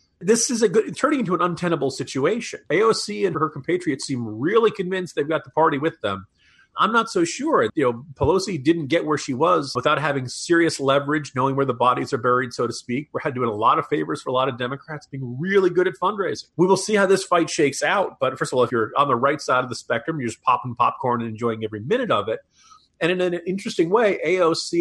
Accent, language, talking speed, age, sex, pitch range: American, English, 245 wpm, 40-59, male, 125-180 Hz